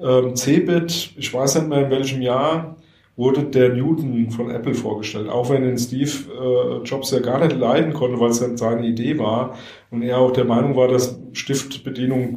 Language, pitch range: German, 115-140 Hz